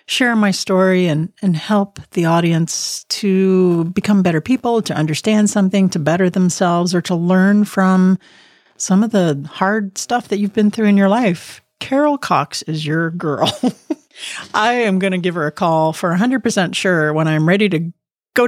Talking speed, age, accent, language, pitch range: 180 wpm, 40-59, American, English, 170-230 Hz